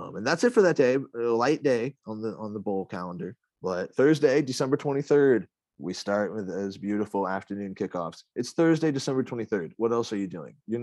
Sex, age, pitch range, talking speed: male, 20-39, 105-135 Hz, 205 wpm